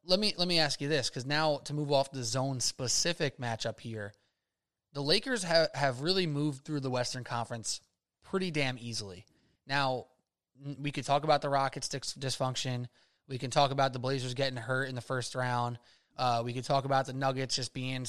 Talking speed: 195 wpm